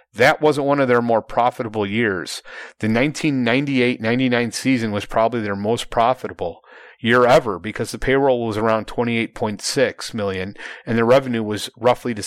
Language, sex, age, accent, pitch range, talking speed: English, male, 30-49, American, 115-140 Hz, 155 wpm